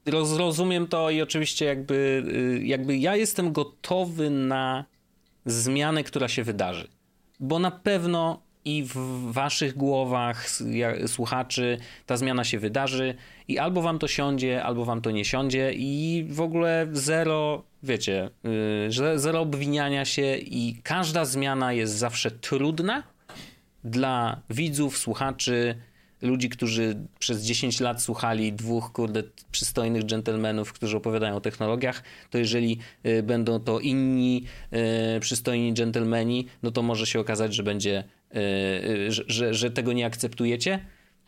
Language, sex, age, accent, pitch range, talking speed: Polish, male, 30-49, native, 115-150 Hz, 125 wpm